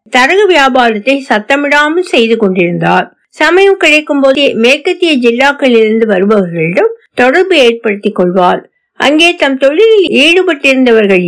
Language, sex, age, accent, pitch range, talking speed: Tamil, female, 60-79, native, 215-295 Hz, 100 wpm